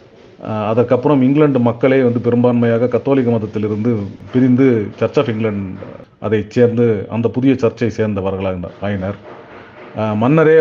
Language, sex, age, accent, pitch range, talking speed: Tamil, male, 40-59, native, 115-150 Hz, 105 wpm